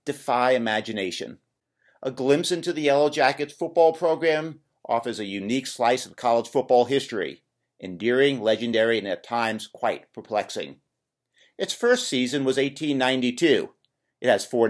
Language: English